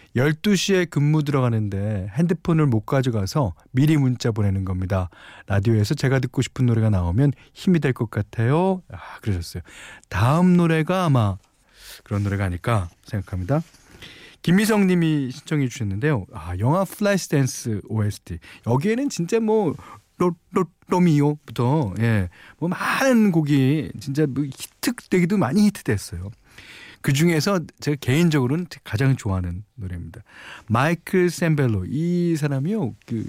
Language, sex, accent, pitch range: Korean, male, native, 105-160 Hz